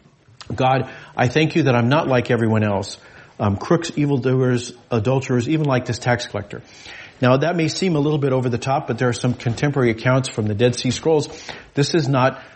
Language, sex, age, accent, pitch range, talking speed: English, male, 40-59, American, 115-140 Hz, 205 wpm